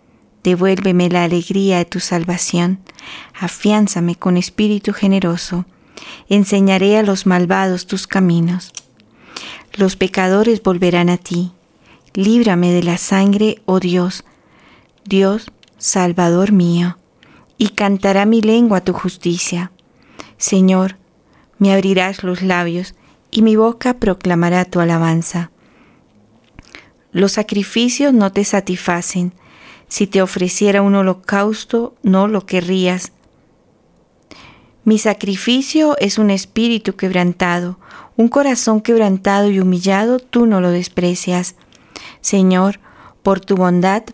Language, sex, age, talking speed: Spanish, female, 40-59, 105 wpm